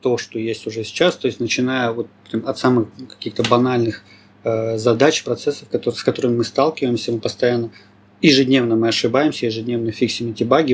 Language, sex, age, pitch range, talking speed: Russian, male, 30-49, 110-130 Hz, 155 wpm